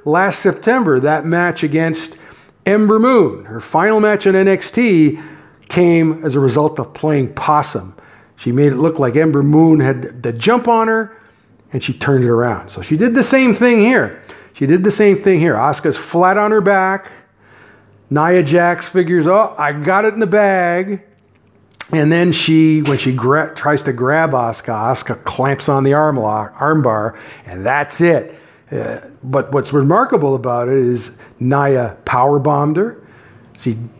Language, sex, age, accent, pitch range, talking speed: English, male, 50-69, American, 120-180 Hz, 170 wpm